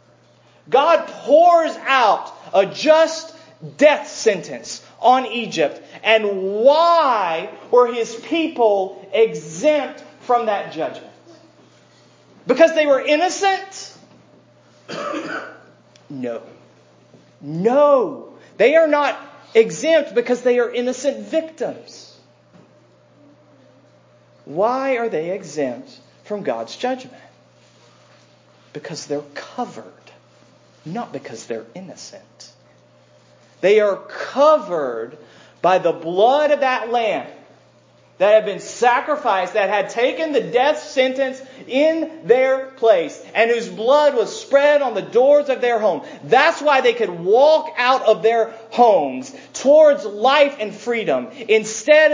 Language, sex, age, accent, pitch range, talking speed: English, male, 40-59, American, 195-290 Hz, 110 wpm